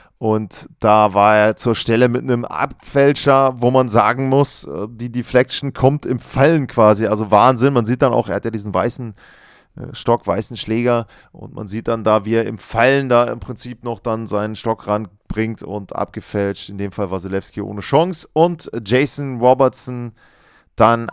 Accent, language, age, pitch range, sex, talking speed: German, German, 30-49, 105-125 Hz, male, 180 wpm